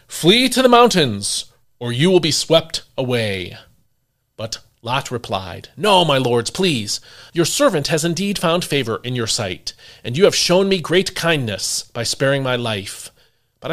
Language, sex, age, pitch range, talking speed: English, male, 40-59, 115-165 Hz, 165 wpm